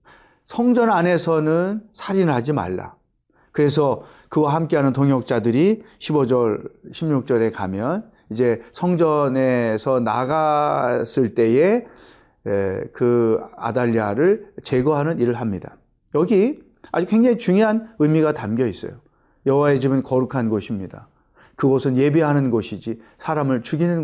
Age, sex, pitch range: 30-49, male, 125-175 Hz